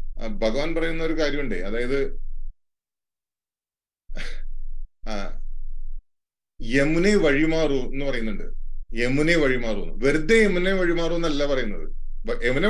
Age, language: 30-49, English